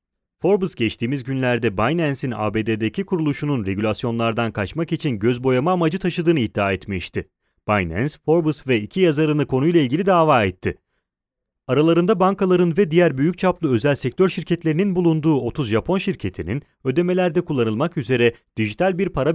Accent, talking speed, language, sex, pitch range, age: Turkish, 135 wpm, Italian, male, 110-165 Hz, 30-49